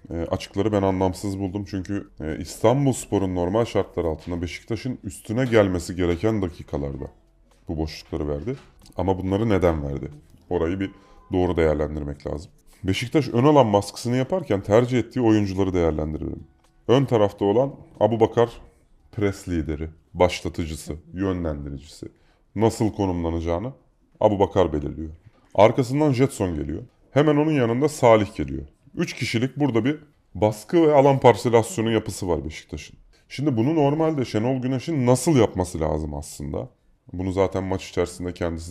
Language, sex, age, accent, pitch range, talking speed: Turkish, male, 30-49, native, 85-120 Hz, 125 wpm